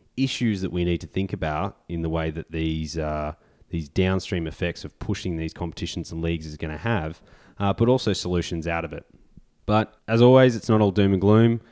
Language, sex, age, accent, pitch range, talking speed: English, male, 20-39, Australian, 80-105 Hz, 210 wpm